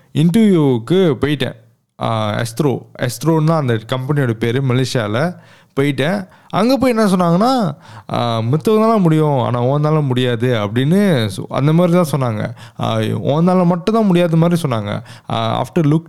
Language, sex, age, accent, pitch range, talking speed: Tamil, male, 20-39, native, 115-160 Hz, 115 wpm